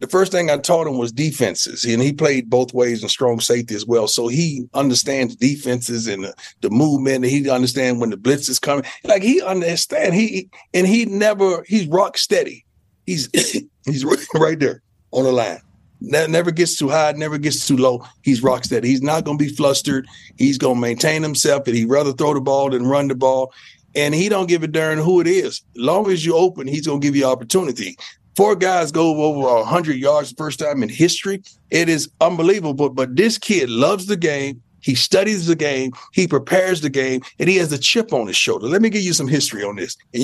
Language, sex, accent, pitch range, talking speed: English, male, American, 130-180 Hz, 220 wpm